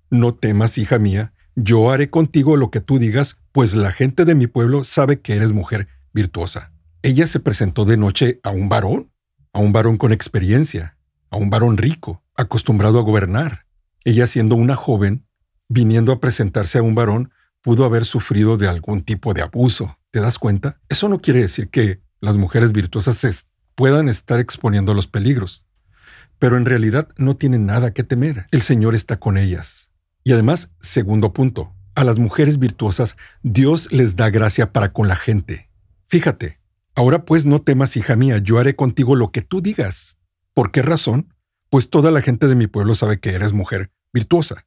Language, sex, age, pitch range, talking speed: Spanish, male, 50-69, 100-130 Hz, 180 wpm